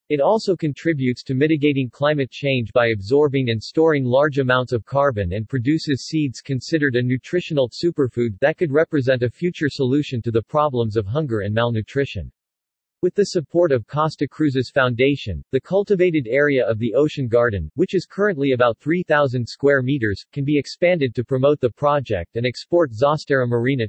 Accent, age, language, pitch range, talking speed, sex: American, 40-59, English, 120-155 Hz, 170 wpm, male